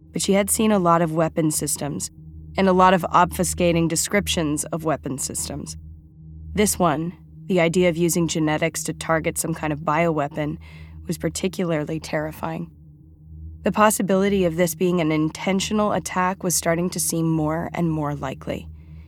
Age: 20-39